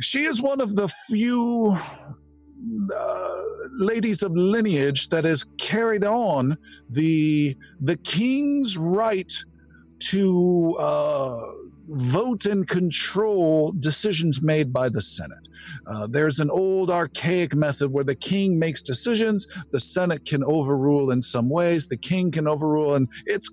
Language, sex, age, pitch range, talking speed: English, male, 50-69, 135-205 Hz, 135 wpm